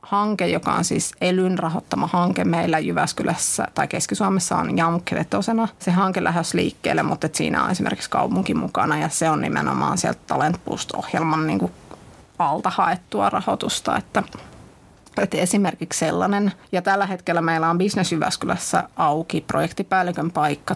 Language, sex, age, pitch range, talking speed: English, female, 30-49, 165-195 Hz, 130 wpm